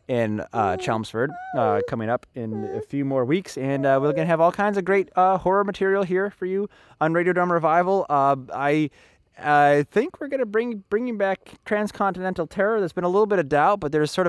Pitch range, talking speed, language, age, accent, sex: 125-180 Hz, 225 wpm, English, 20-39, American, male